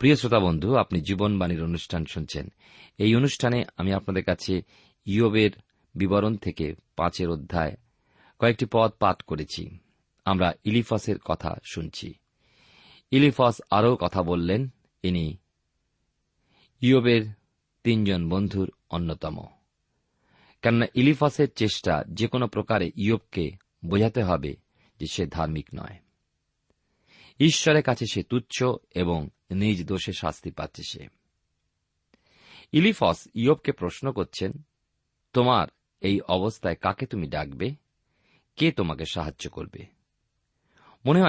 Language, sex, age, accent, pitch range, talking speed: Bengali, male, 40-59, native, 85-125 Hz, 80 wpm